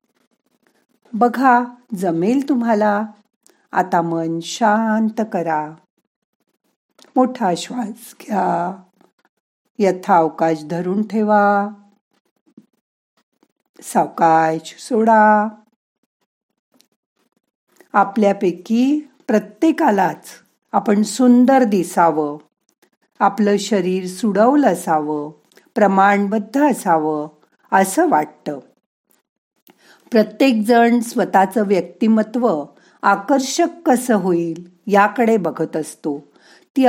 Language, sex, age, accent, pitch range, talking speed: Marathi, female, 50-69, native, 180-245 Hz, 60 wpm